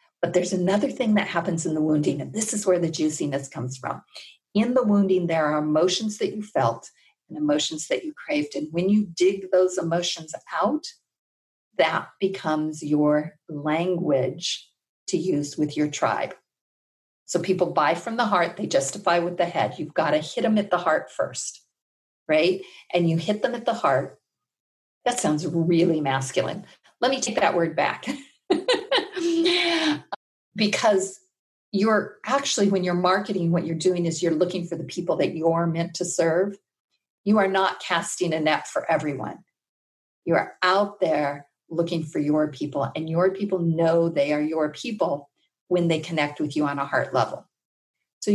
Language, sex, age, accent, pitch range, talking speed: English, female, 50-69, American, 160-210 Hz, 170 wpm